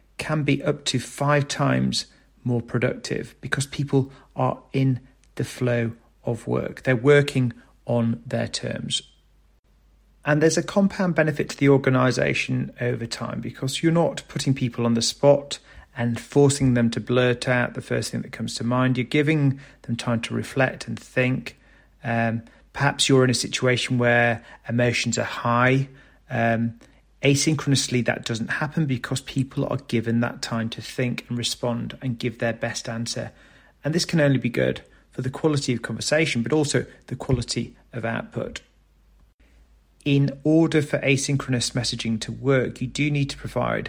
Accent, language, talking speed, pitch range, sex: British, English, 165 wpm, 115-135 Hz, male